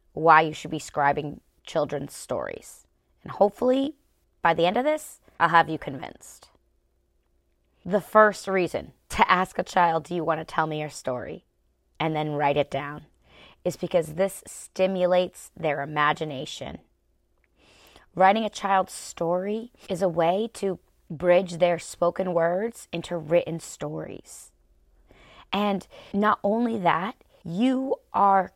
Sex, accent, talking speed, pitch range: female, American, 135 wpm, 155-195 Hz